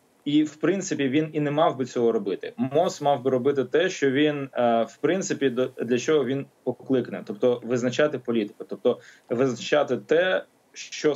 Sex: male